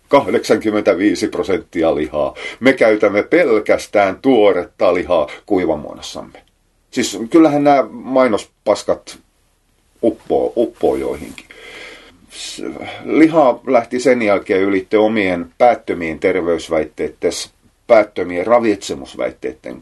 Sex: male